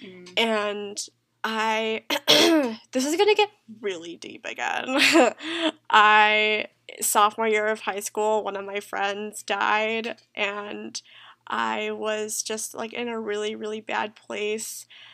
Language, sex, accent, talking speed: English, female, American, 125 wpm